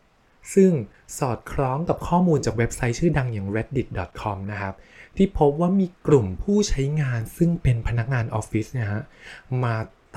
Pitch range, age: 105-140 Hz, 20-39